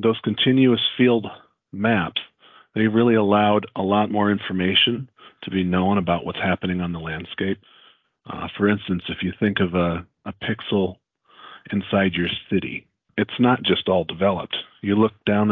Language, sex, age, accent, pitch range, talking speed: English, male, 40-59, American, 95-110 Hz, 160 wpm